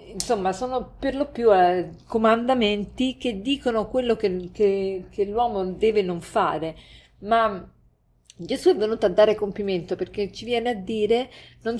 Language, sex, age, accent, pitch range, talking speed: Italian, female, 50-69, native, 175-225 Hz, 145 wpm